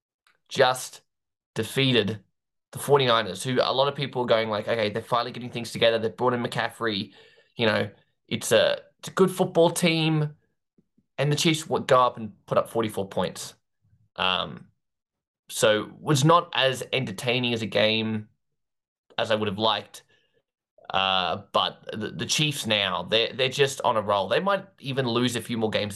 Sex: male